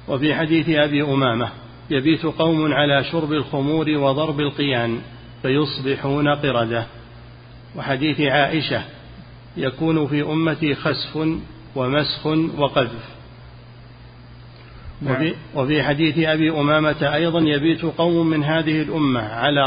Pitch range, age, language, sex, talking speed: 135-155 Hz, 40-59, Arabic, male, 100 wpm